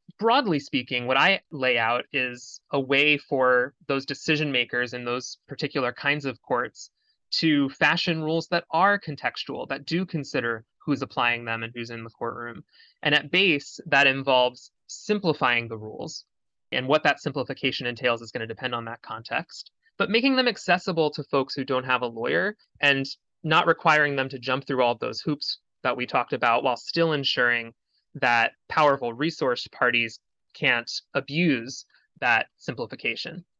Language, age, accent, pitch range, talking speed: English, 20-39, American, 120-160 Hz, 165 wpm